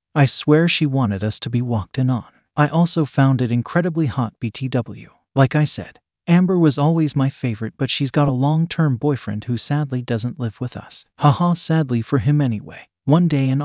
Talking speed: 200 wpm